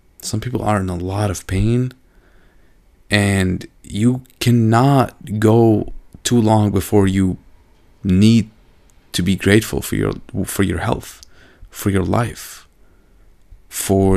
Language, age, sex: English, 30-49, male